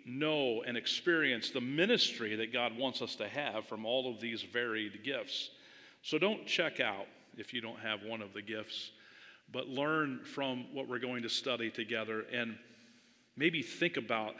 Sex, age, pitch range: male, 40-59, 110-130 Hz